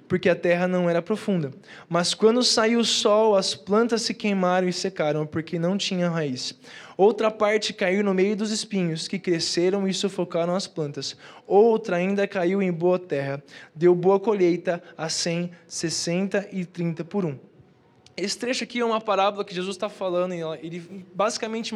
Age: 10-29